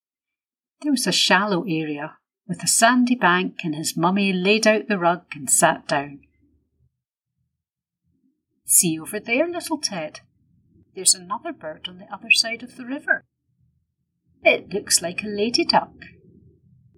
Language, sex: English, female